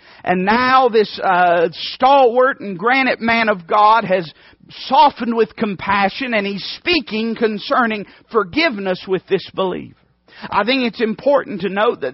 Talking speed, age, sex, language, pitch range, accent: 145 wpm, 50-69, male, English, 180-225 Hz, American